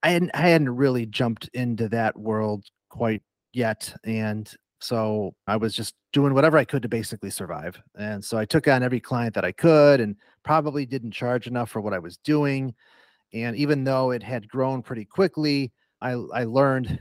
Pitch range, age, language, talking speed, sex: 110-125 Hz, 40-59, English, 190 wpm, male